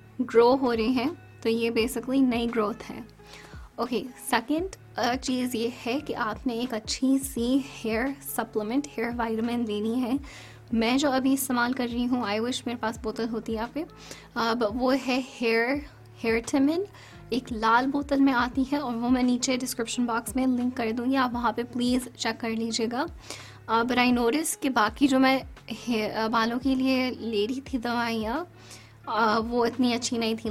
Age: 20-39